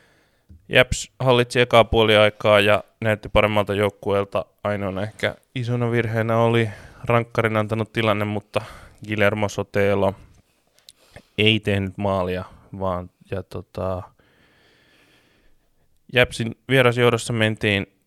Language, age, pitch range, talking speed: Finnish, 20-39, 100-115 Hz, 90 wpm